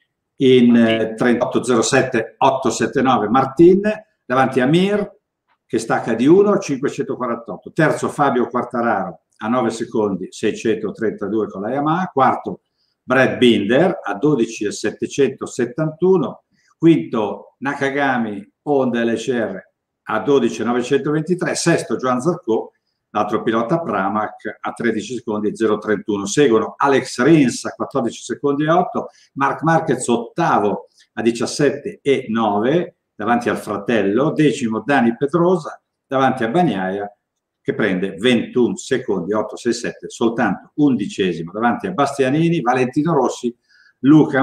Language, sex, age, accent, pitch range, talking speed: Italian, male, 50-69, native, 115-155 Hz, 115 wpm